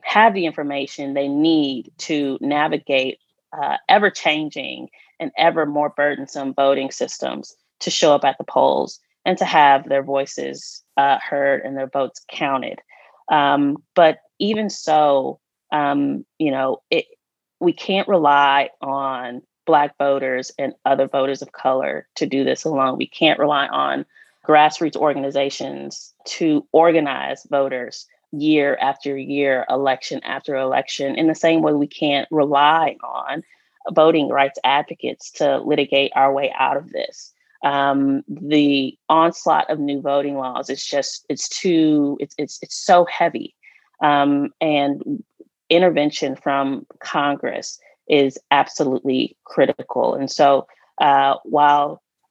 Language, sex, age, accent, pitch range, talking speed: English, female, 20-39, American, 140-155 Hz, 130 wpm